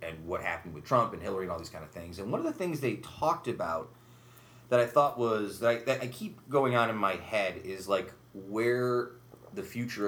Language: English